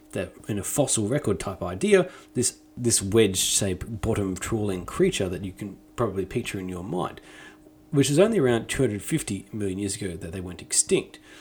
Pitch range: 95-135 Hz